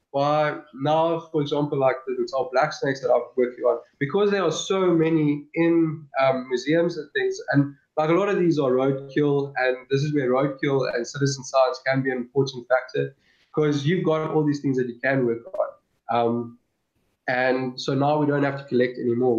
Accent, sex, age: South African, male, 20-39